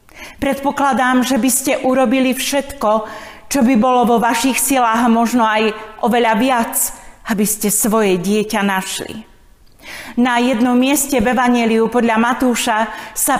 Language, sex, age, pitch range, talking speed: Slovak, female, 40-59, 215-265 Hz, 130 wpm